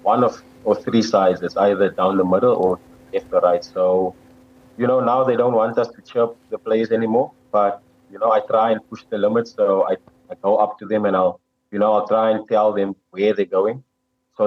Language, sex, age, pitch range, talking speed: English, male, 30-49, 100-115 Hz, 230 wpm